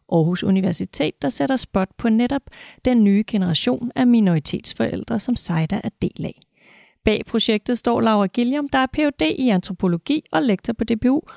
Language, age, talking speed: Danish, 30-49, 165 wpm